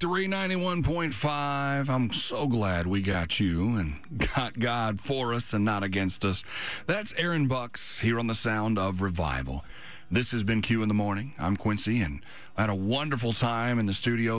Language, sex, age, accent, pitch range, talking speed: English, male, 40-59, American, 95-120 Hz, 180 wpm